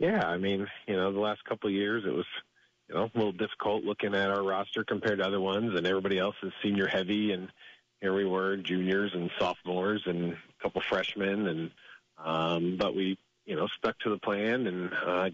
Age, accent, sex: 40-59, American, male